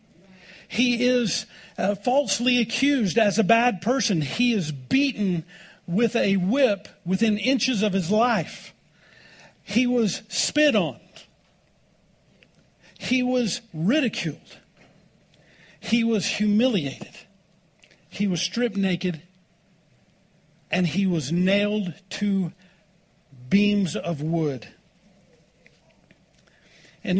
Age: 50-69